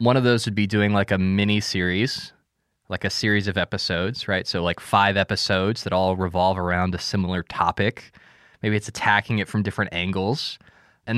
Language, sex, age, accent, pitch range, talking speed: English, male, 20-39, American, 100-130 Hz, 190 wpm